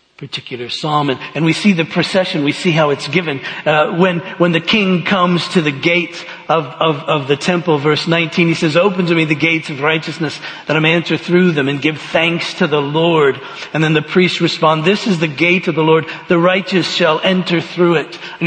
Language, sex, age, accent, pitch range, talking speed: English, male, 50-69, American, 155-185 Hz, 225 wpm